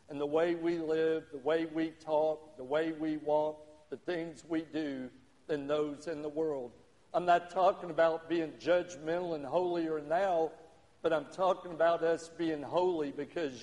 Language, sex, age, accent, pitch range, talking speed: English, male, 50-69, American, 145-170 Hz, 170 wpm